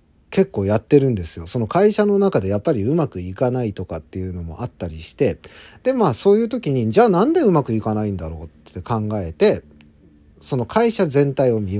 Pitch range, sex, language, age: 95-155 Hz, male, Japanese, 40-59